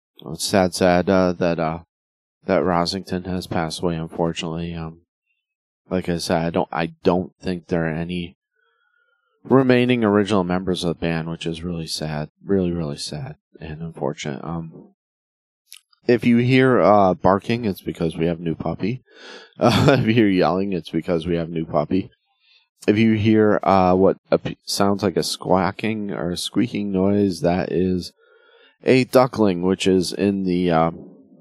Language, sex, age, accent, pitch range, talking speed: English, male, 30-49, American, 85-100 Hz, 160 wpm